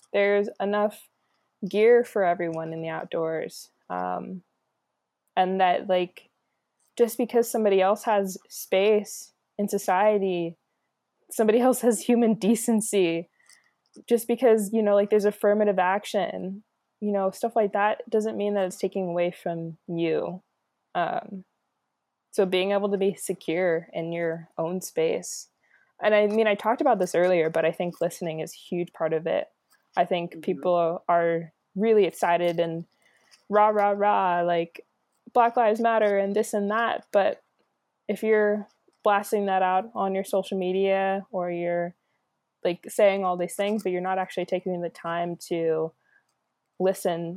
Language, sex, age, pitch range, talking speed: English, female, 20-39, 170-210 Hz, 150 wpm